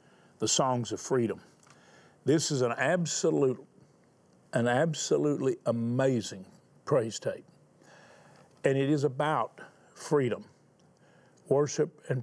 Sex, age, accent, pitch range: male, 50-69, American, 130-160 Hz